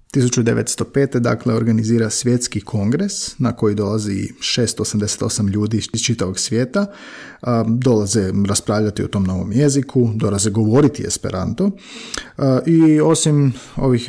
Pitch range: 110-135 Hz